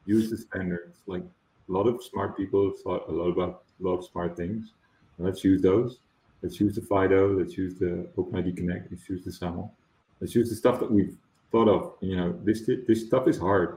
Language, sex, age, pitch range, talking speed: English, male, 40-59, 90-105 Hz, 220 wpm